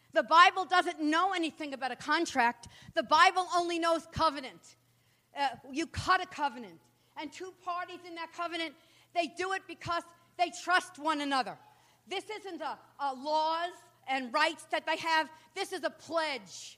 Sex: female